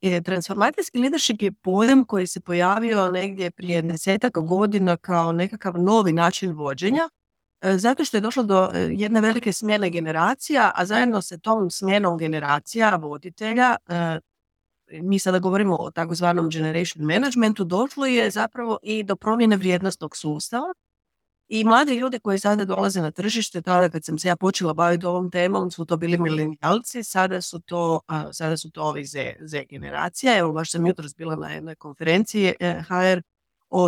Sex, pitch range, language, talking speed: female, 170-215 Hz, Croatian, 155 wpm